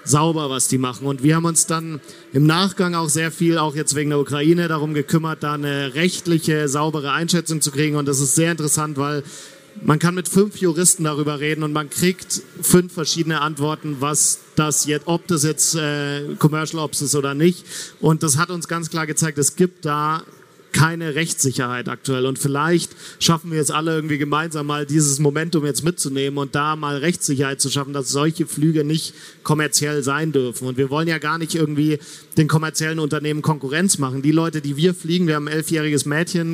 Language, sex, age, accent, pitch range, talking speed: German, male, 40-59, German, 145-165 Hz, 195 wpm